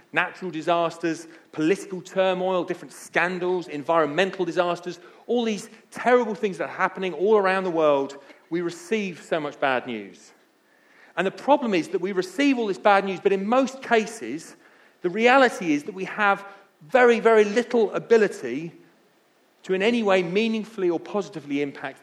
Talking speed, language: 160 wpm, English